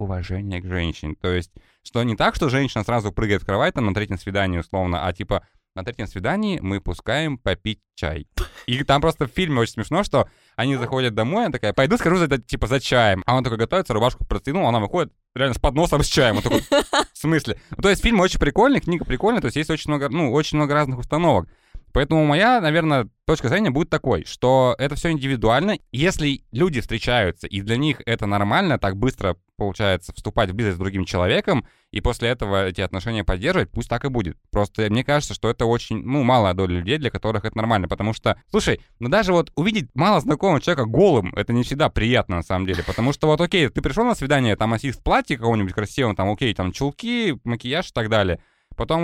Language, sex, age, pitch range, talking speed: Russian, male, 20-39, 100-150 Hz, 215 wpm